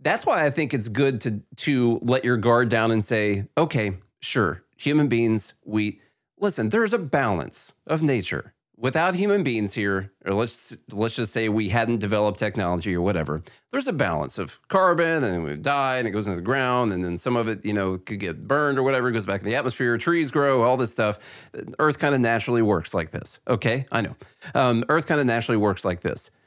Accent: American